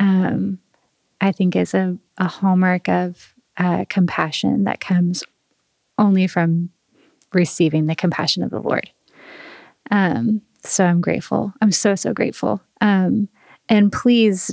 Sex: female